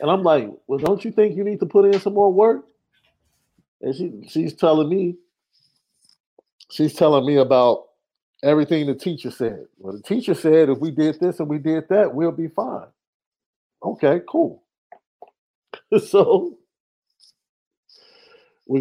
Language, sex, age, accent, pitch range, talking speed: English, male, 50-69, American, 120-200 Hz, 150 wpm